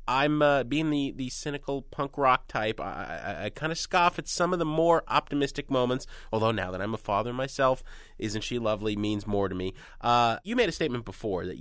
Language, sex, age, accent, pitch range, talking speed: English, male, 30-49, American, 95-145 Hz, 215 wpm